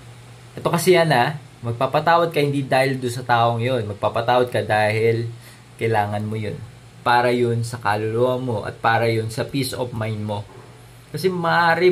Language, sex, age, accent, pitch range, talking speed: Filipino, male, 20-39, native, 120-165 Hz, 160 wpm